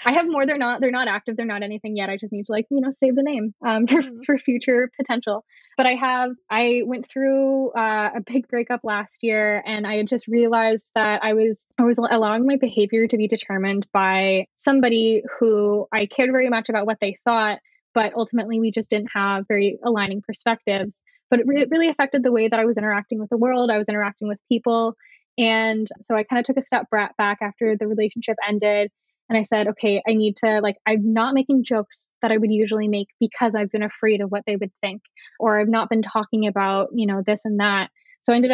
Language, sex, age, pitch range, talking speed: English, female, 10-29, 210-250 Hz, 230 wpm